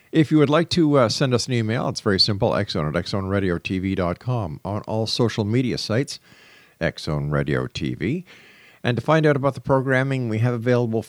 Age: 50-69